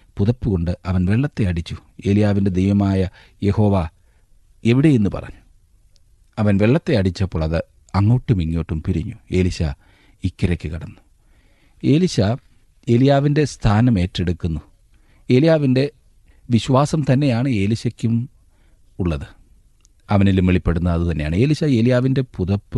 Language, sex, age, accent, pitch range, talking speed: Malayalam, male, 40-59, native, 90-125 Hz, 90 wpm